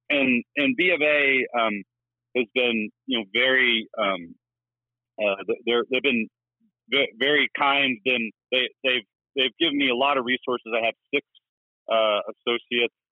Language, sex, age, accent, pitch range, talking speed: English, male, 40-59, American, 110-130 Hz, 155 wpm